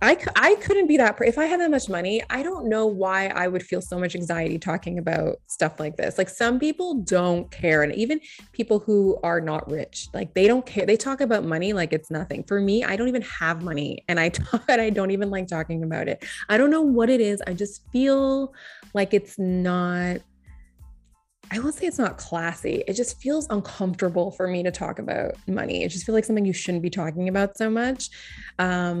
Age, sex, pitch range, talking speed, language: 20-39, female, 170-225 Hz, 215 wpm, English